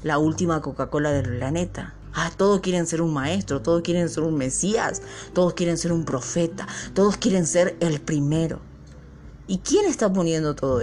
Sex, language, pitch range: female, Spanish, 125-175 Hz